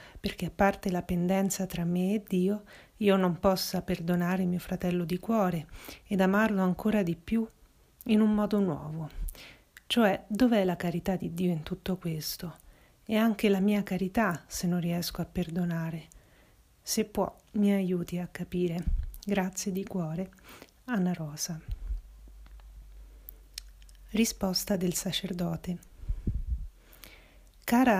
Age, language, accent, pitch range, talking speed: 40-59, Italian, native, 170-195 Hz, 130 wpm